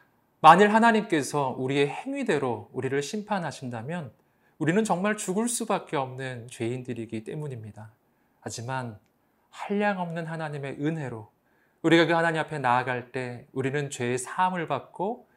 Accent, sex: native, male